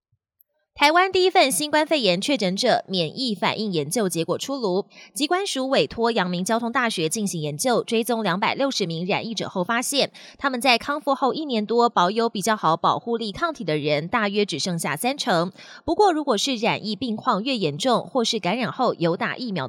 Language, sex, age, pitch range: Chinese, female, 20-39, 180-255 Hz